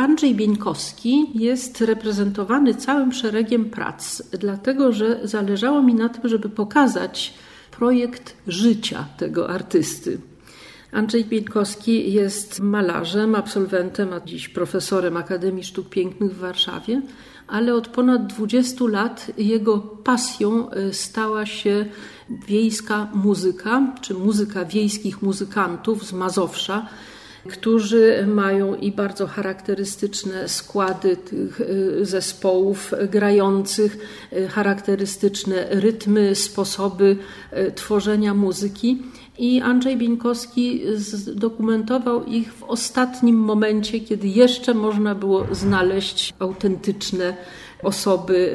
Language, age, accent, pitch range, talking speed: Polish, 50-69, native, 195-230 Hz, 95 wpm